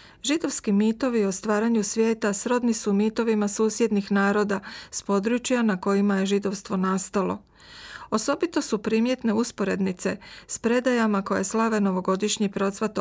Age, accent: 40-59, native